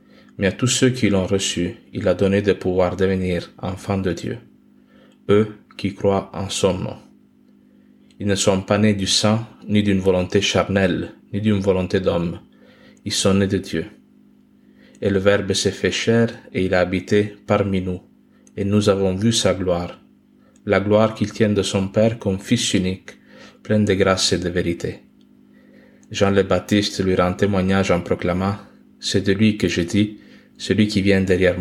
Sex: male